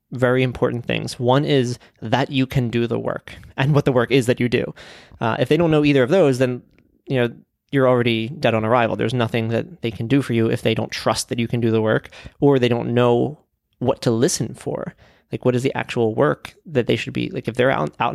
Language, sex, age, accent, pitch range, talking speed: English, male, 20-39, American, 115-135 Hz, 250 wpm